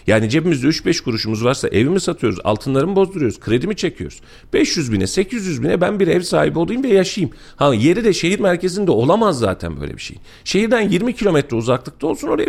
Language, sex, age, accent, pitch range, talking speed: Turkish, male, 40-59, native, 100-160 Hz, 185 wpm